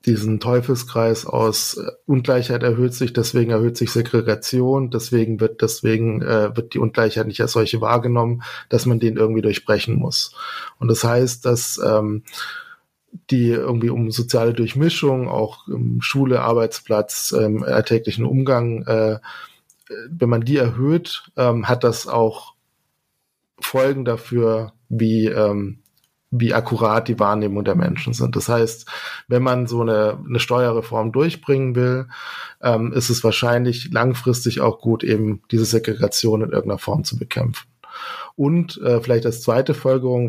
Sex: male